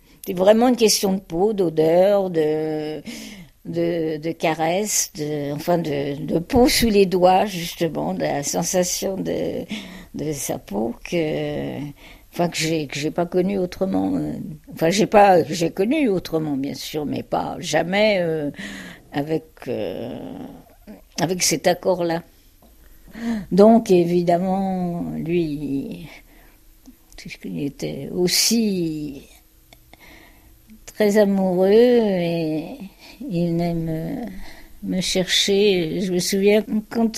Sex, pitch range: female, 160-215 Hz